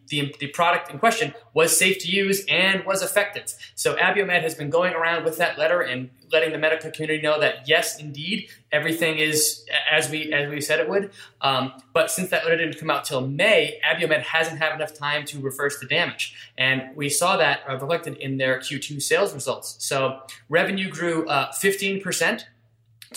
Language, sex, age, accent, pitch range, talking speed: English, male, 20-39, American, 140-175 Hz, 190 wpm